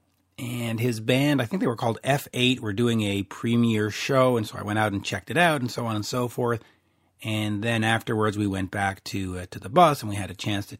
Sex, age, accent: male, 40-59, American